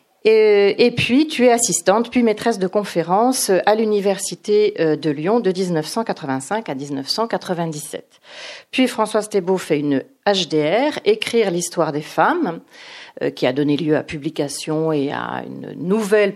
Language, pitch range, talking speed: French, 155-225 Hz, 140 wpm